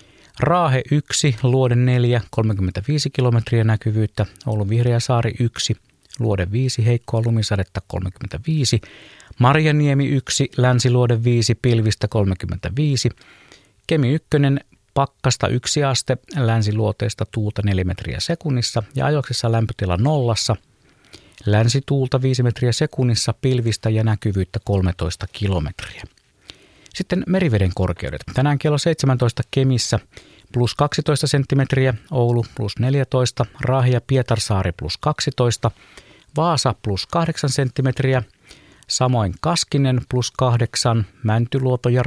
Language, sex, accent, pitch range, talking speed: Finnish, male, native, 110-135 Hz, 105 wpm